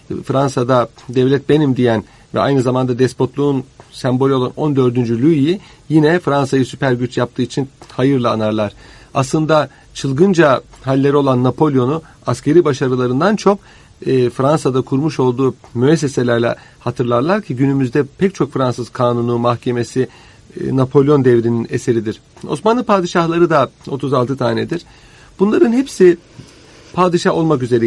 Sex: male